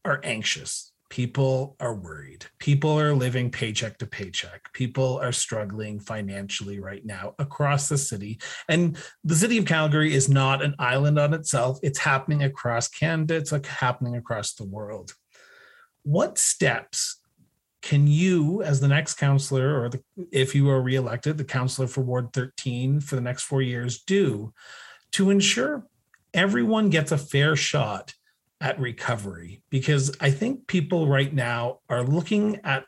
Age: 40-59